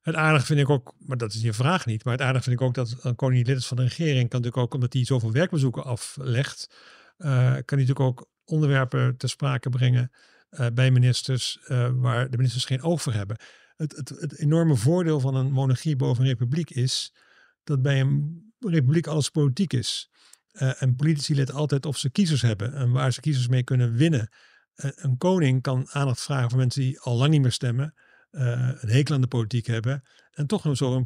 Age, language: 50-69, Dutch